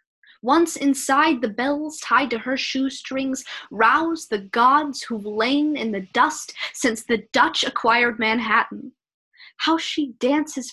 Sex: female